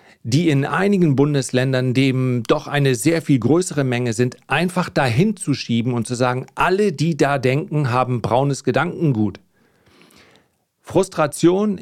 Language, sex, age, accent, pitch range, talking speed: German, male, 40-59, German, 125-160 Hz, 135 wpm